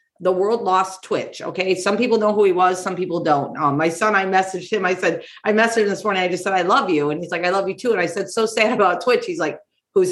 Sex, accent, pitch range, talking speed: female, American, 180-240 Hz, 295 wpm